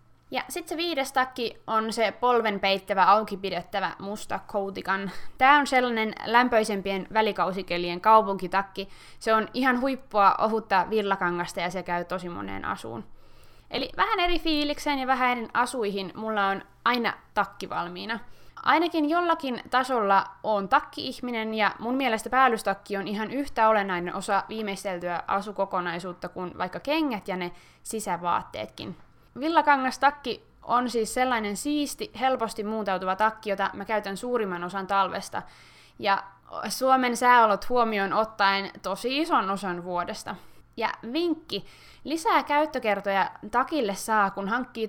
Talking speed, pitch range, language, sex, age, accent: 130 wpm, 195-250 Hz, Finnish, female, 20-39, native